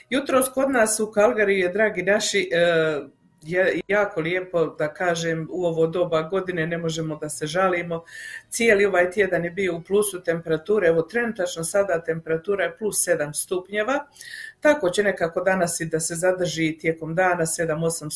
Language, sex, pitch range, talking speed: Croatian, female, 165-205 Hz, 160 wpm